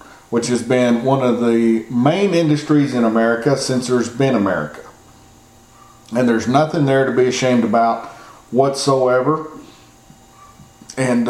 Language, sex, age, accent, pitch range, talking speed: English, male, 40-59, American, 120-140 Hz, 125 wpm